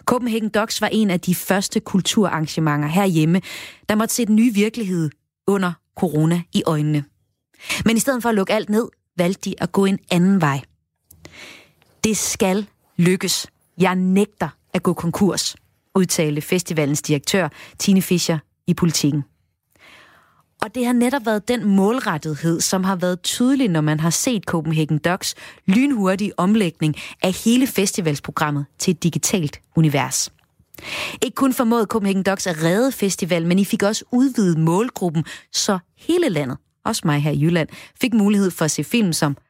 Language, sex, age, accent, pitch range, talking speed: Danish, female, 30-49, native, 160-215 Hz, 160 wpm